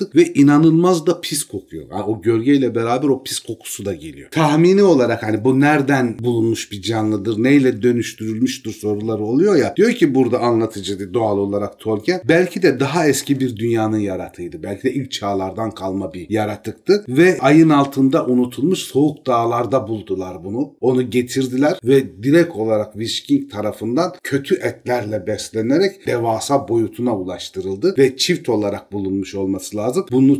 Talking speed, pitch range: 150 wpm, 110-140 Hz